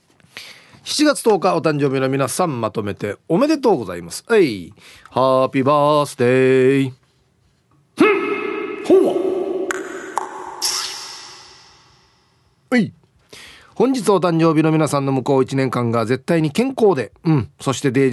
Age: 40-59